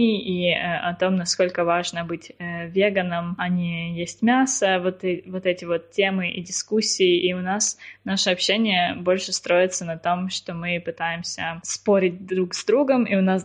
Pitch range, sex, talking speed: 180-200 Hz, female, 180 wpm